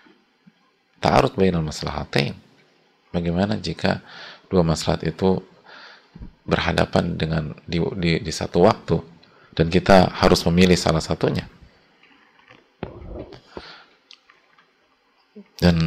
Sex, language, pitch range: male, English, 80-100 Hz